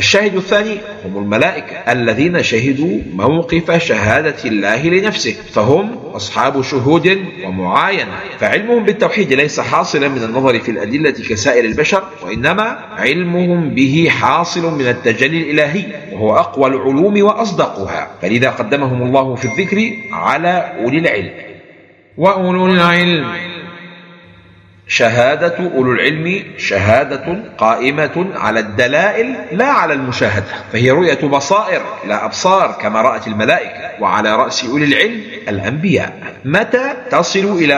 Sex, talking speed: male, 115 wpm